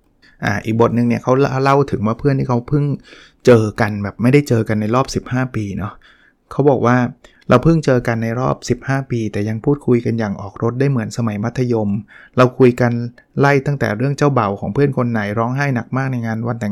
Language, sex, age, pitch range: Thai, male, 20-39, 115-145 Hz